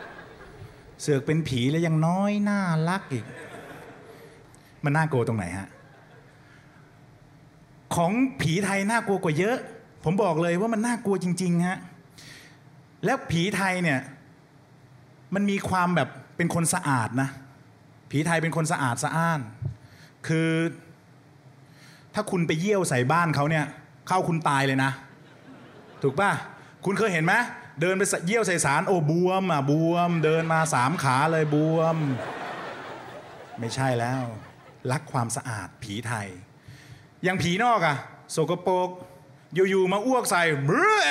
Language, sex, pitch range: Thai, male, 140-185 Hz